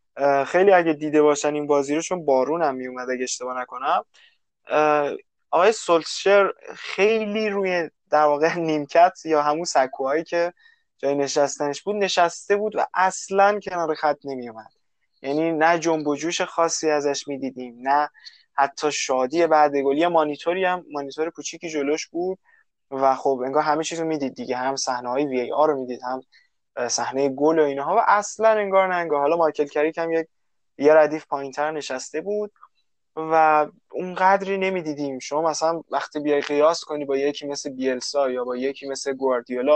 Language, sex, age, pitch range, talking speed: Persian, male, 20-39, 140-175 Hz, 155 wpm